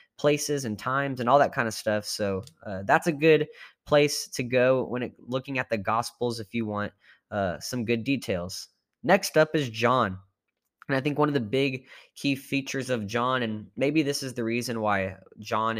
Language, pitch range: English, 105-135 Hz